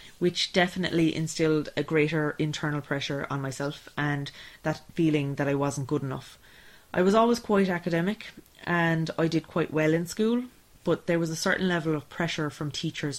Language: English